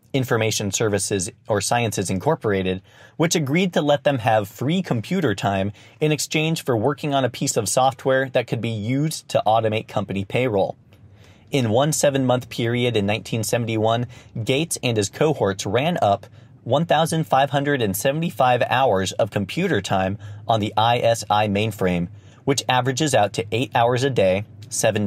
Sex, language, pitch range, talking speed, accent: male, English, 105-135 Hz, 145 wpm, American